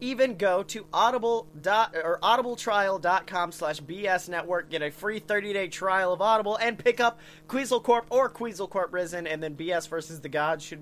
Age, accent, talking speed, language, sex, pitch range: 30-49, American, 190 wpm, English, male, 155-200 Hz